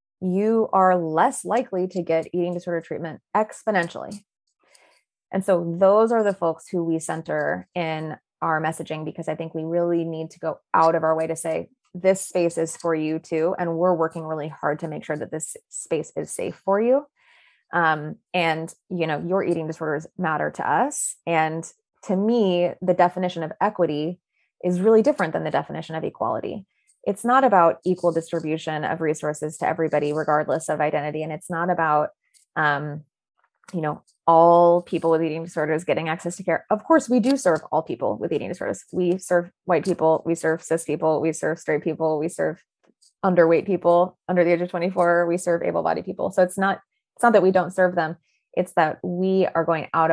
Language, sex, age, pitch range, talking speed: English, female, 20-39, 160-185 Hz, 195 wpm